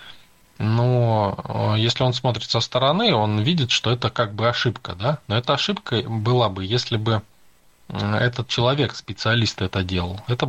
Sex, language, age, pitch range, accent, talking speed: male, Russian, 20-39, 95-125 Hz, native, 155 wpm